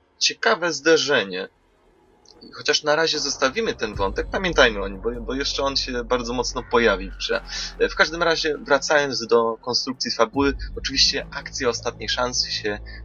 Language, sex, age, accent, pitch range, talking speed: Polish, male, 20-39, native, 100-125 Hz, 145 wpm